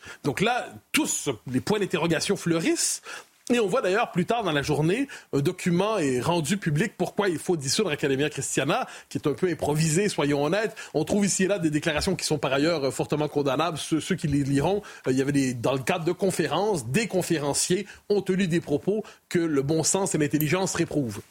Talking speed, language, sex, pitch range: 205 wpm, French, male, 150-220 Hz